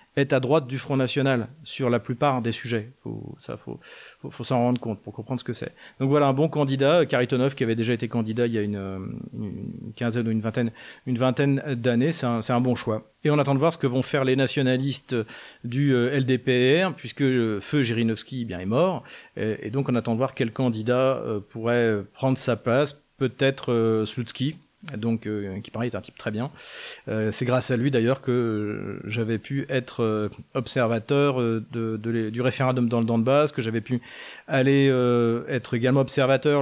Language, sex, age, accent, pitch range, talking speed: French, male, 40-59, French, 115-140 Hz, 210 wpm